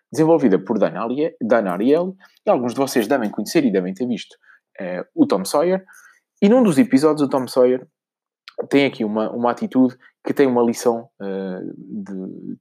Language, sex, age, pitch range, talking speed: Portuguese, male, 20-39, 110-145 Hz, 165 wpm